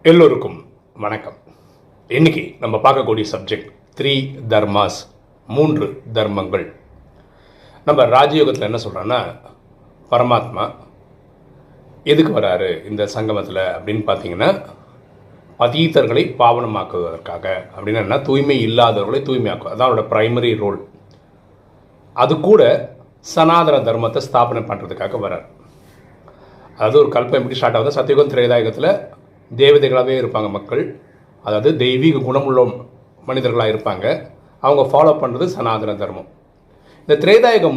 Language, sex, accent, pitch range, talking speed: Tamil, male, native, 110-155 Hz, 95 wpm